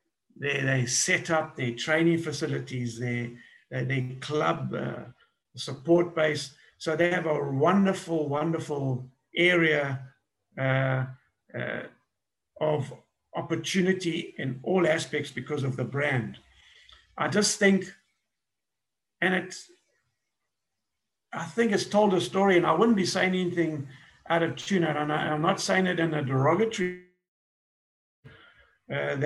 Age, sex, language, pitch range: 50-69, male, English, 135-170 Hz